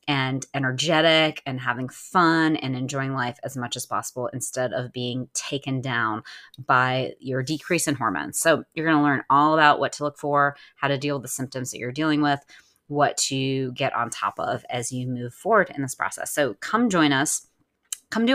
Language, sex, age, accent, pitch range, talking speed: English, female, 30-49, American, 130-150 Hz, 200 wpm